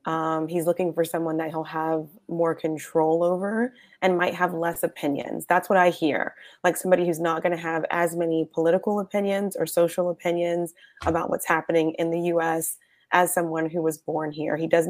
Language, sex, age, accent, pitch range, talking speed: English, female, 20-39, American, 160-185 Hz, 195 wpm